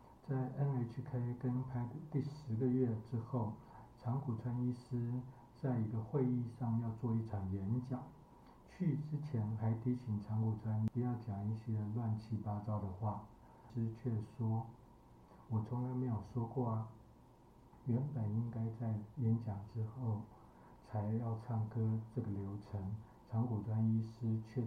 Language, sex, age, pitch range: Chinese, male, 60-79, 105-120 Hz